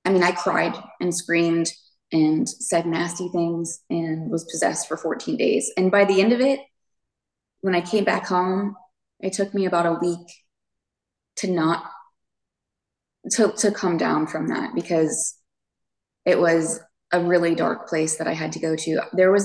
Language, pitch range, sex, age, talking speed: English, 165-200 Hz, female, 20-39, 175 wpm